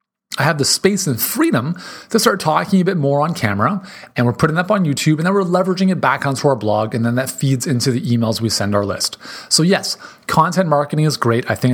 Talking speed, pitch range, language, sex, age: 245 wpm, 120-165 Hz, English, male, 30-49